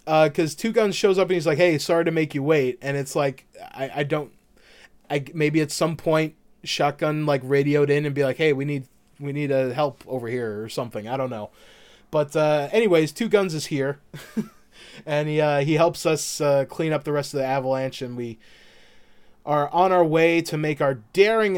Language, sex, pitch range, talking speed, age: English, male, 140-165 Hz, 215 wpm, 20-39